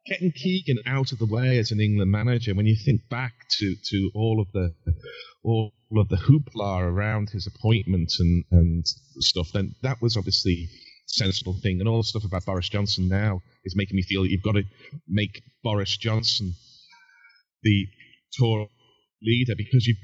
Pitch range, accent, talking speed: 95-125 Hz, British, 180 wpm